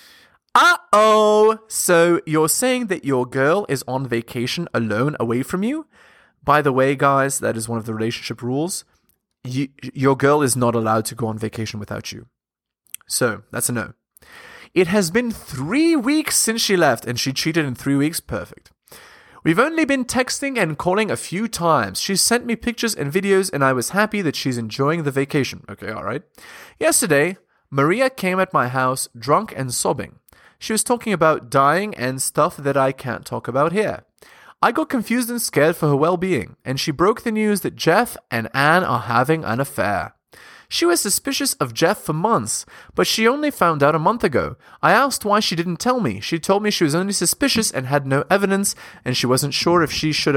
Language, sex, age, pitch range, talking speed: English, male, 20-39, 130-215 Hz, 200 wpm